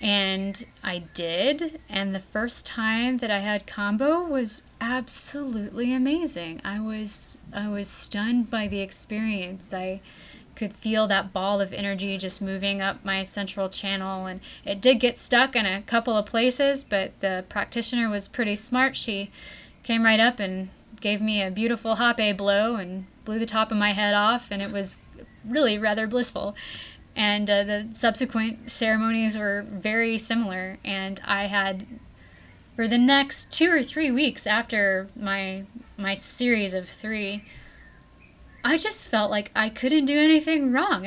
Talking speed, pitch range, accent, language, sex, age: 160 wpm, 200-240 Hz, American, English, female, 20-39